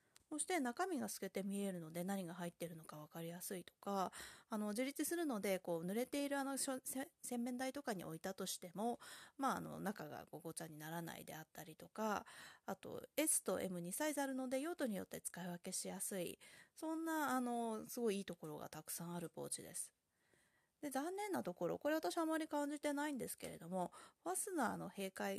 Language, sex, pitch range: Japanese, female, 175-270 Hz